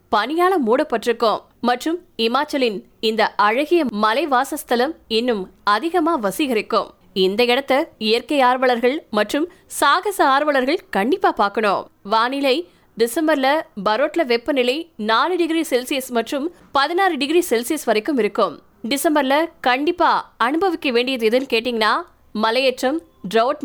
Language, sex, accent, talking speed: Tamil, female, native, 100 wpm